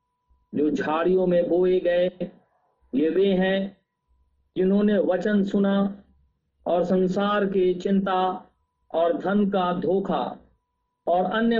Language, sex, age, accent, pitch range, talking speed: Hindi, male, 50-69, native, 150-195 Hz, 110 wpm